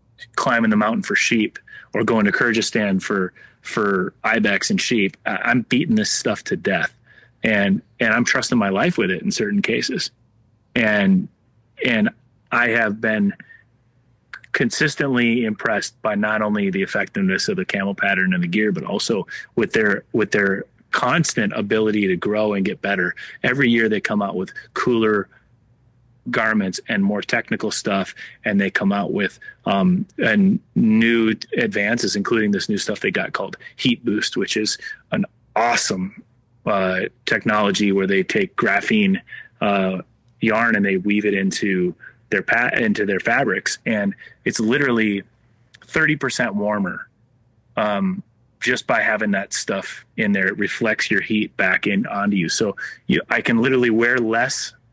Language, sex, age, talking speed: English, male, 30-49, 155 wpm